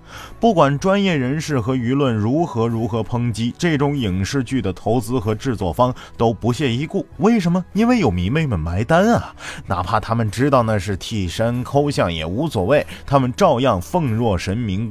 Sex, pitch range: male, 100-150 Hz